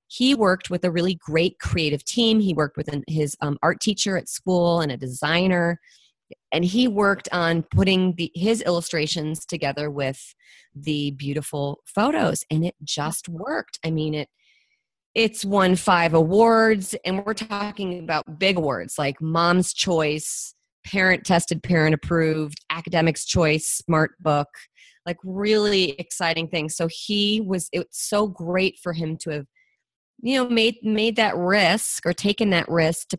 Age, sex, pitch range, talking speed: 30-49, female, 160-200 Hz, 150 wpm